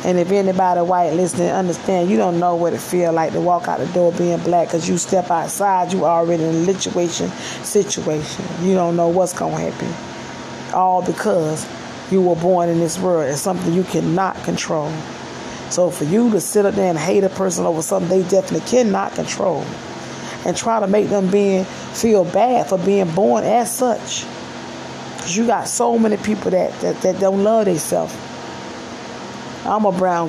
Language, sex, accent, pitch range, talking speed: English, female, American, 170-195 Hz, 190 wpm